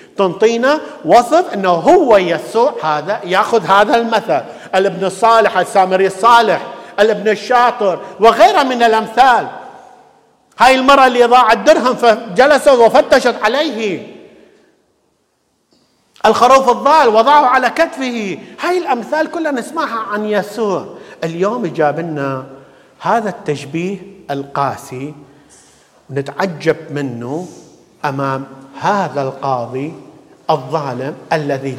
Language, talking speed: English, 95 wpm